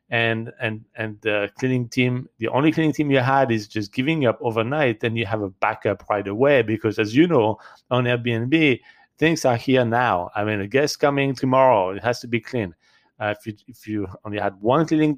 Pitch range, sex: 110-140 Hz, male